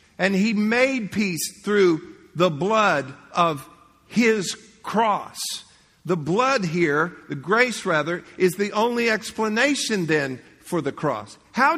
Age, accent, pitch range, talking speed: 50-69, American, 180-255 Hz, 125 wpm